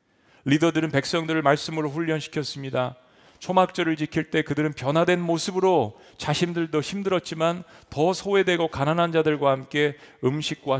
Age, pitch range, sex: 40-59, 130-165 Hz, male